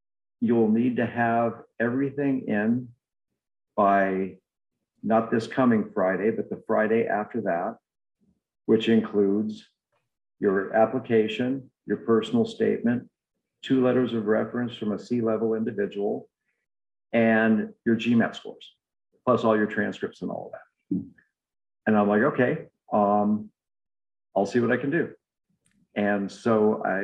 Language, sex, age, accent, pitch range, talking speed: English, male, 50-69, American, 100-115 Hz, 125 wpm